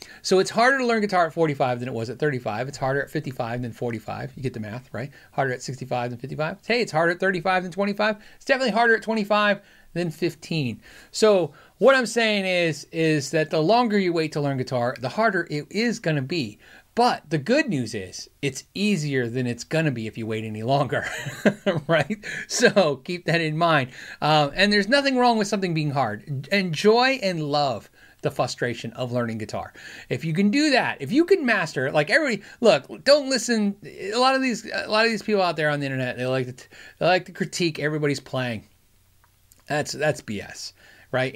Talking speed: 210 wpm